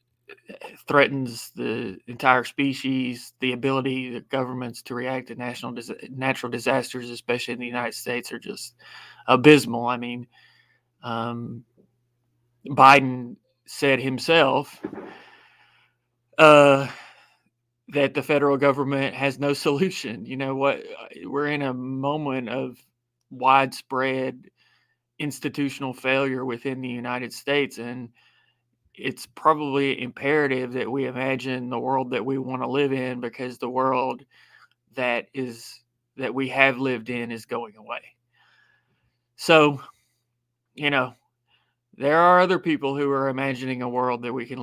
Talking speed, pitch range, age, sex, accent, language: 125 wpm, 120-135 Hz, 30-49, male, American, English